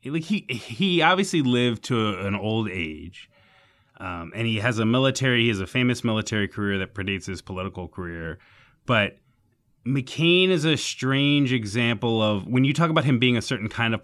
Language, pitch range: English, 100-125 Hz